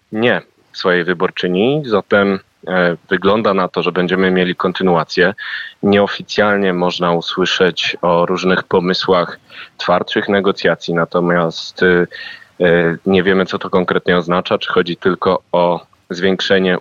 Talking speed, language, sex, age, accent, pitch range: 110 wpm, Polish, male, 20-39, native, 90-100 Hz